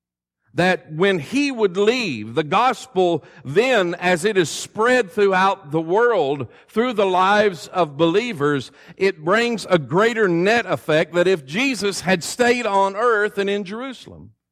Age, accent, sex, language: 50-69, American, male, English